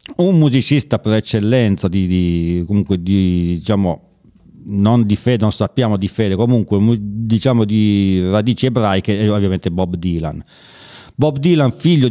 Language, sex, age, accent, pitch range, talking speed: German, male, 50-69, Italian, 100-125 Hz, 145 wpm